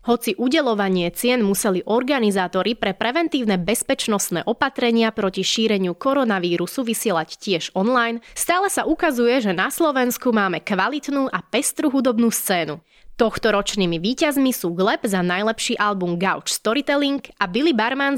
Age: 20-39